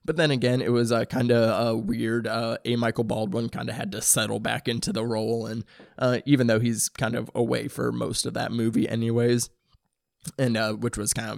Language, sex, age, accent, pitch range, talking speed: English, male, 20-39, American, 115-125 Hz, 230 wpm